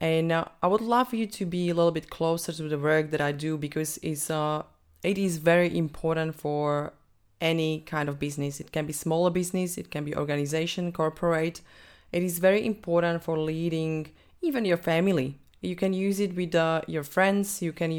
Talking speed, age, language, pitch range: 195 wpm, 20-39, English, 145-170 Hz